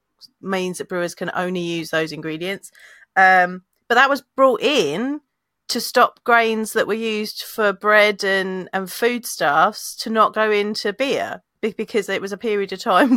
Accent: British